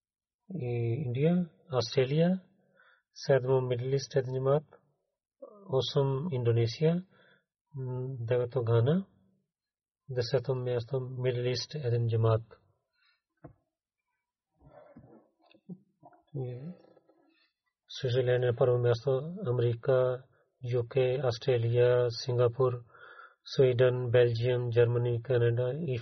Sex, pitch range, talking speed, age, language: male, 125-150 Hz, 60 wpm, 40-59, Bulgarian